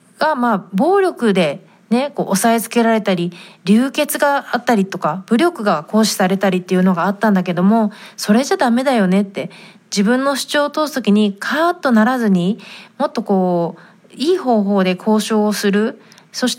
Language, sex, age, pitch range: Japanese, female, 30-49, 190-250 Hz